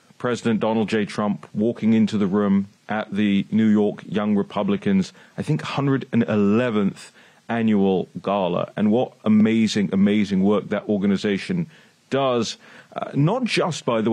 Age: 30-49